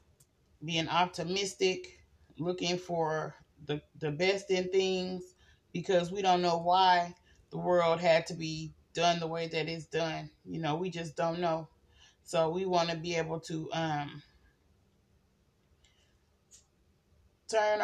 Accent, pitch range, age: American, 155-185 Hz, 30-49